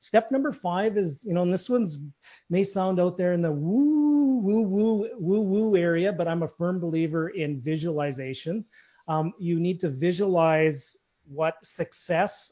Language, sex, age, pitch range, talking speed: English, male, 40-59, 160-195 Hz, 170 wpm